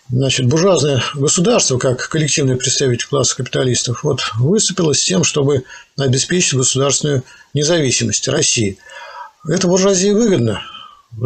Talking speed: 110 wpm